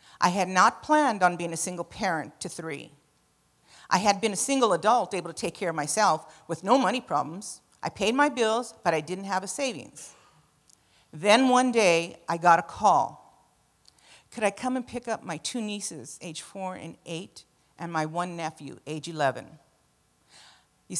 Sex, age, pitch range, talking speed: female, 50-69, 165-230 Hz, 185 wpm